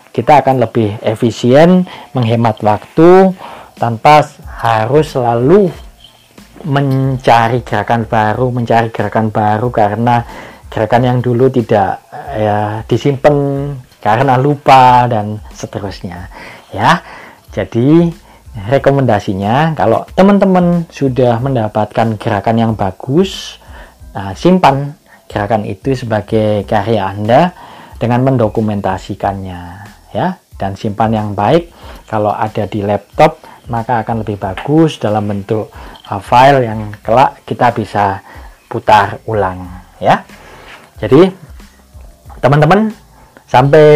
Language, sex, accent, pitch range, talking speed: Indonesian, male, native, 105-135 Hz, 95 wpm